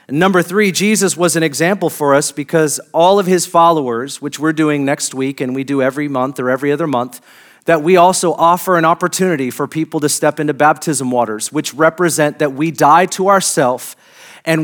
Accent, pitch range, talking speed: American, 150-185 Hz, 195 wpm